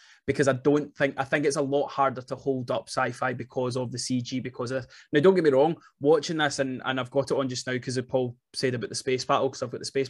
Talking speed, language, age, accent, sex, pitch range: 285 wpm, English, 20-39, British, male, 130-145 Hz